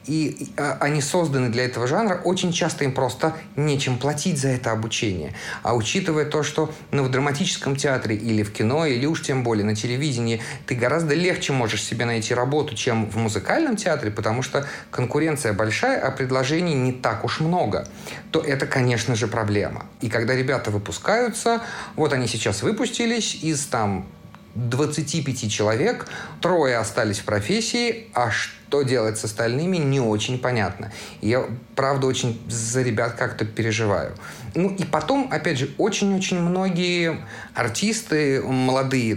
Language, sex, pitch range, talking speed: Russian, male, 115-160 Hz, 150 wpm